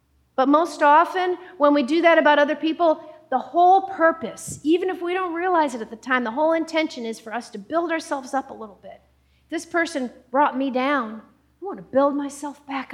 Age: 40-59